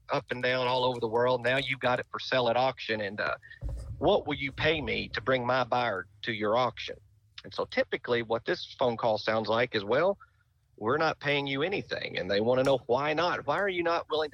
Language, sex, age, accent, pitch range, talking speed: English, male, 50-69, American, 115-145 Hz, 245 wpm